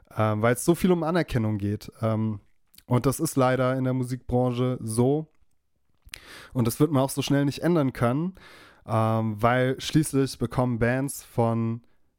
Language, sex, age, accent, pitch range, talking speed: German, male, 20-39, German, 120-145 Hz, 150 wpm